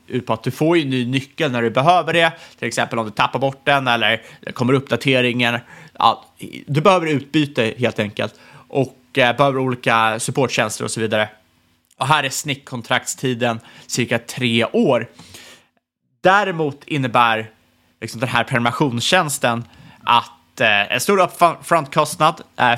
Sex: male